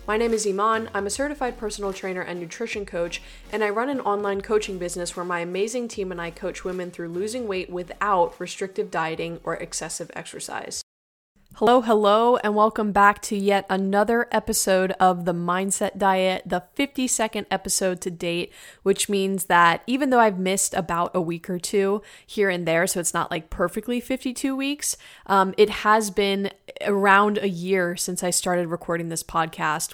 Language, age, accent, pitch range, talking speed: English, 20-39, American, 180-215 Hz, 180 wpm